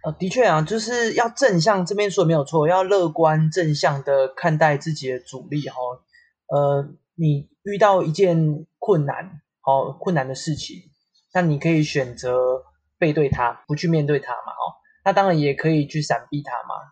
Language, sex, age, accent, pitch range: Chinese, male, 20-39, native, 145-185 Hz